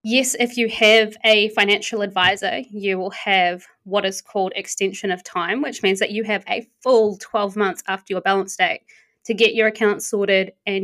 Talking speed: 195 wpm